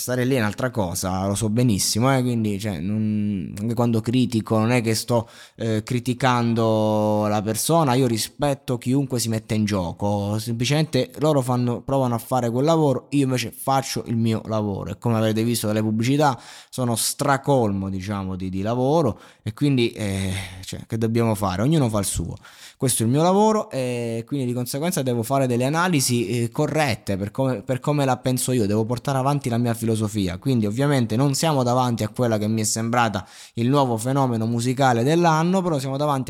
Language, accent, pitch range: Italian, native, 110-135 Hz